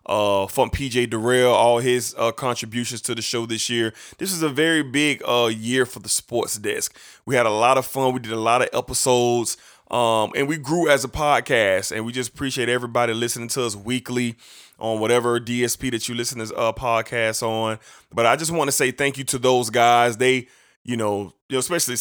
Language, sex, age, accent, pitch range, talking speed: English, male, 20-39, American, 115-135 Hz, 210 wpm